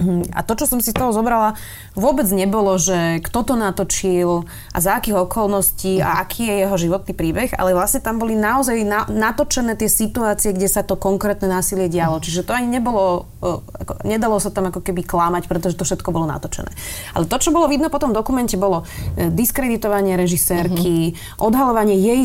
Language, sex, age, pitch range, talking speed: Slovak, female, 20-39, 175-220 Hz, 180 wpm